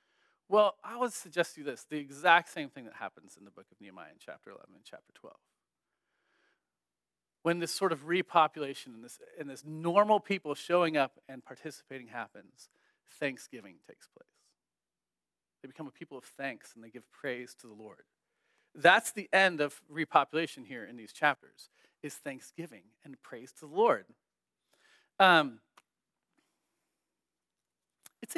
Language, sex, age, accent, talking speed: English, male, 40-59, American, 155 wpm